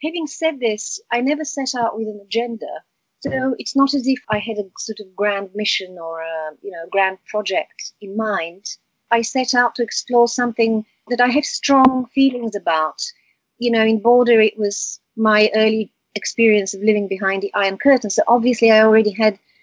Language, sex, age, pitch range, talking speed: English, female, 30-49, 195-235 Hz, 185 wpm